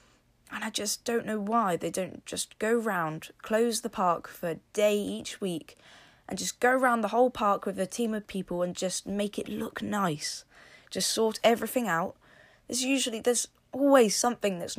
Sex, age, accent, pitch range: female, 20-39, British, 175-230 Hz